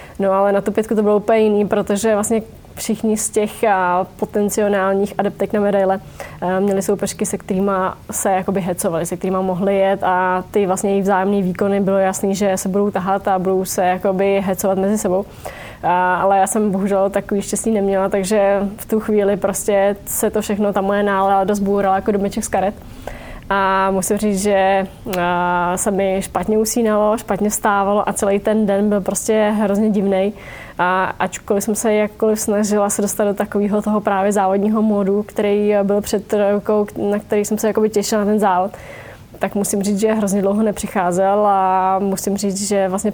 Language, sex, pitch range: Czech, female, 185-205 Hz